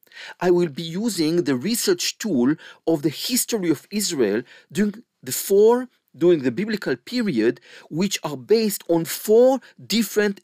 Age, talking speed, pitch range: 50-69, 145 wpm, 170-230 Hz